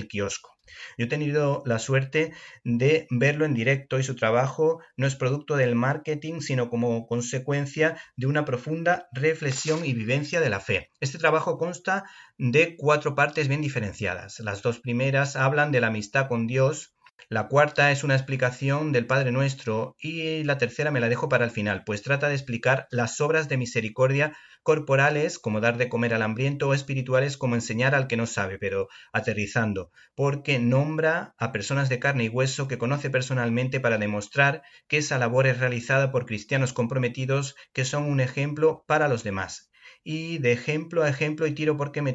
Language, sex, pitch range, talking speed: Spanish, male, 120-145 Hz, 180 wpm